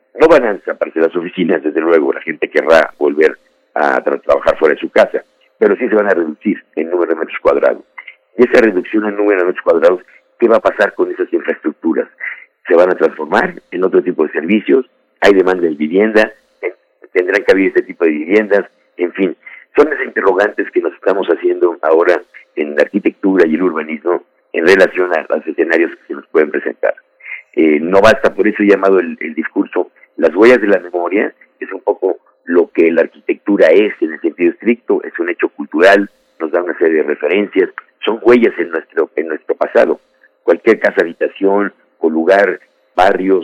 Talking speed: 195 wpm